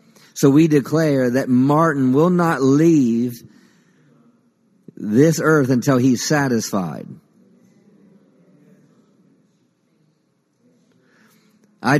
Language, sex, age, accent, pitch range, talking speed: English, male, 50-69, American, 120-165 Hz, 70 wpm